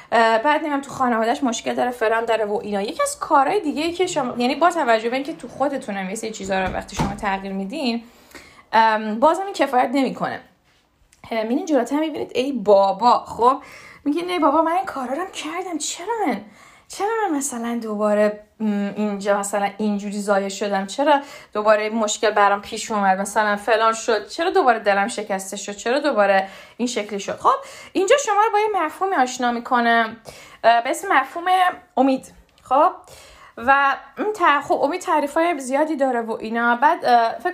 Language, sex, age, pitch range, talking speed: Persian, female, 20-39, 220-305 Hz, 160 wpm